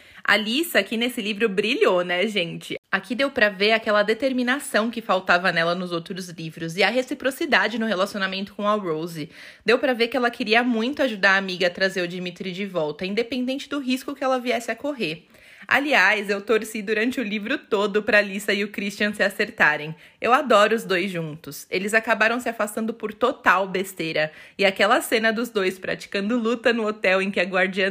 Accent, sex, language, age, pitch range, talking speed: Brazilian, female, Portuguese, 20-39, 190-245 Hz, 195 wpm